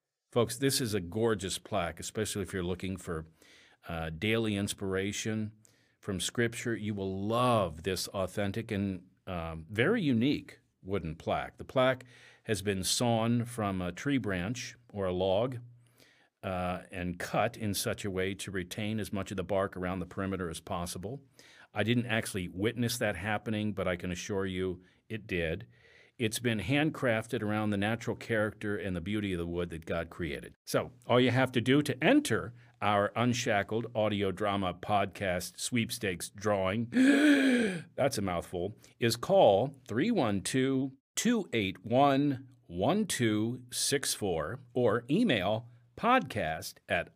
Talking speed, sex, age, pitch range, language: 145 wpm, male, 50-69, 95-120 Hz, English